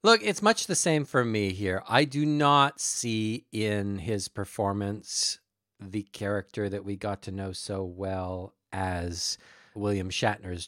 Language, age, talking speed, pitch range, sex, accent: English, 40-59, 150 wpm, 105-155 Hz, male, American